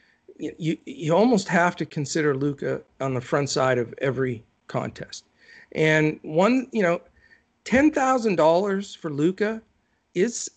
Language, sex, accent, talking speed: English, male, American, 125 wpm